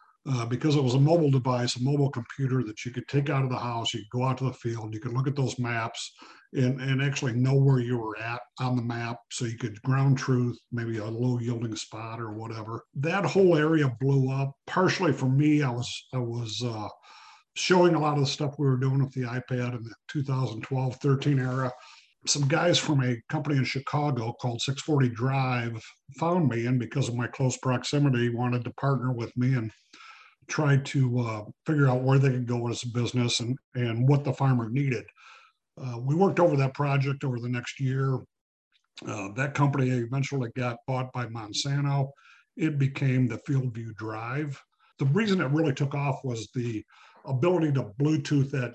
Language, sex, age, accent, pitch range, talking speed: English, male, 50-69, American, 120-140 Hz, 195 wpm